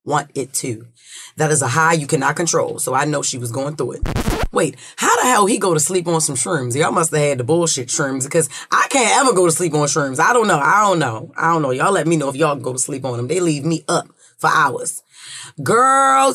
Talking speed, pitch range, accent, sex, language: 265 wpm, 150-210 Hz, American, female, English